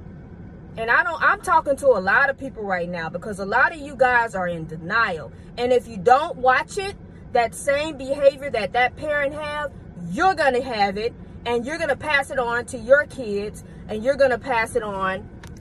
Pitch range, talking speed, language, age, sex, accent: 230-280 Hz, 205 wpm, English, 20-39, female, American